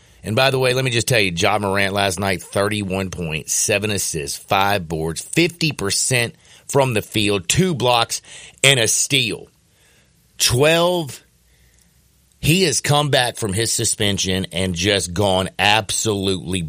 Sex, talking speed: male, 145 wpm